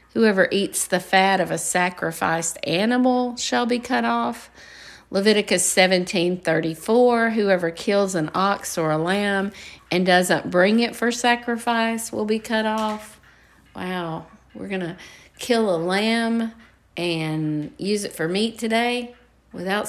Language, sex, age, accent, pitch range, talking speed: English, female, 50-69, American, 170-220 Hz, 135 wpm